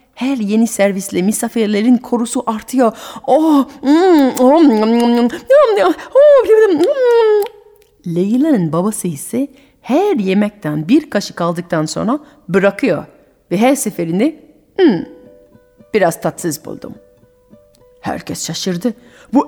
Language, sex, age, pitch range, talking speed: Turkish, female, 30-49, 190-290 Hz, 85 wpm